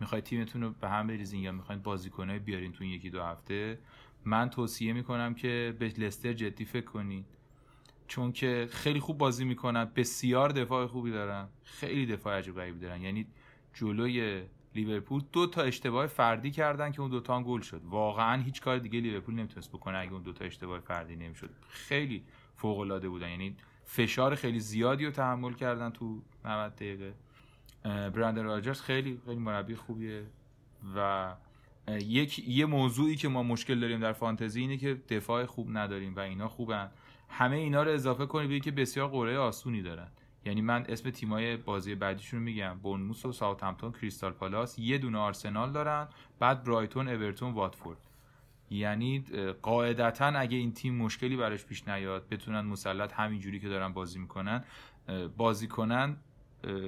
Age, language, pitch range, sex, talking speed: 30-49, Persian, 100-130 Hz, male, 160 wpm